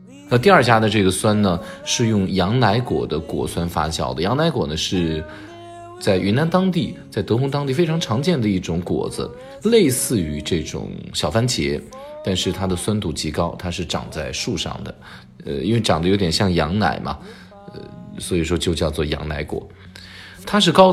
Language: Chinese